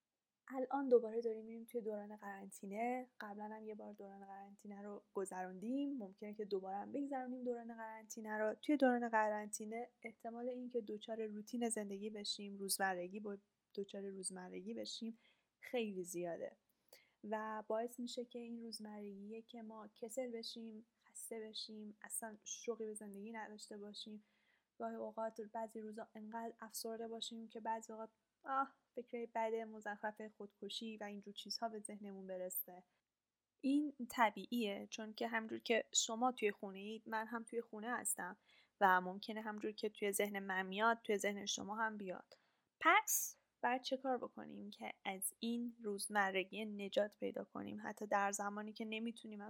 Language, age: Persian, 10-29